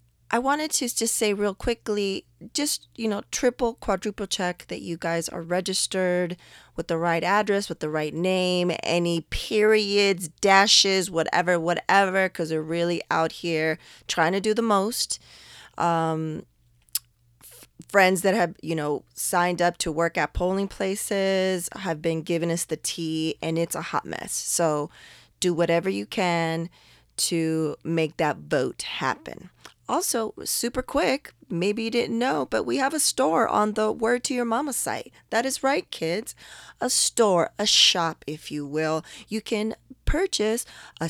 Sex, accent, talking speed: female, American, 160 wpm